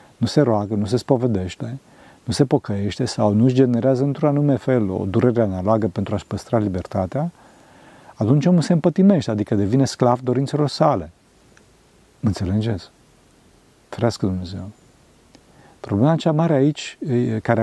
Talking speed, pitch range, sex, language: 135 wpm, 110-150 Hz, male, Romanian